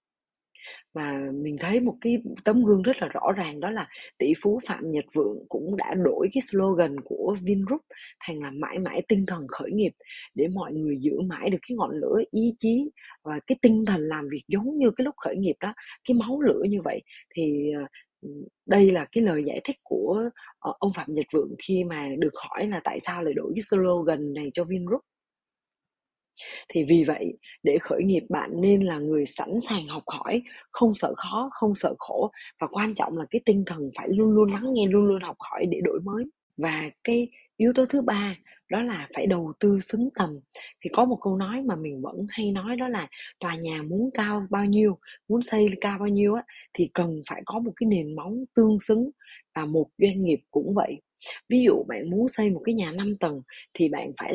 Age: 20-39